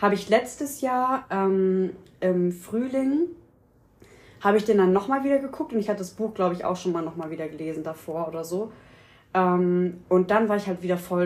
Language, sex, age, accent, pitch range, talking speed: German, female, 20-39, German, 180-205 Hz, 205 wpm